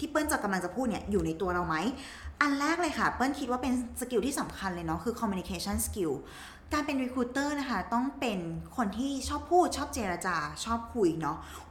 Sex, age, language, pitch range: female, 20-39, Thai, 205-280 Hz